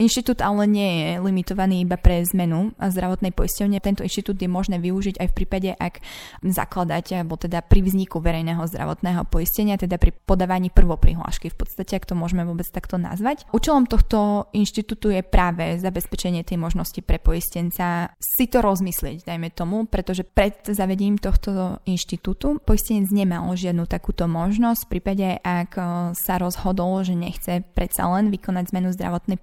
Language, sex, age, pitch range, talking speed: Slovak, female, 20-39, 180-205 Hz, 155 wpm